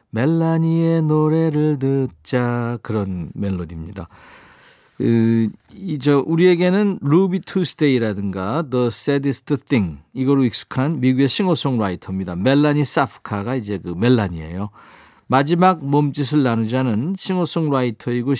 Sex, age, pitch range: male, 50-69, 115-165 Hz